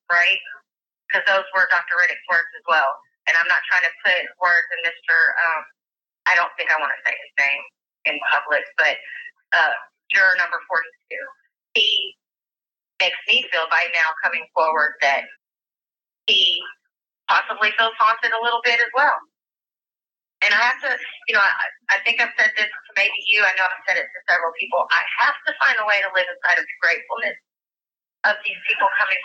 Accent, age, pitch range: American, 30-49, 195-285 Hz